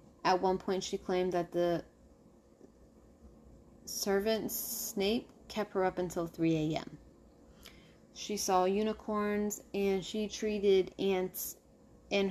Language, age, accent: English, 20-39, American